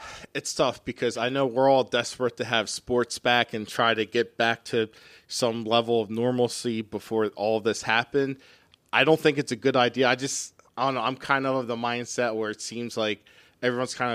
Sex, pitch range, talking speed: male, 110-130 Hz, 210 wpm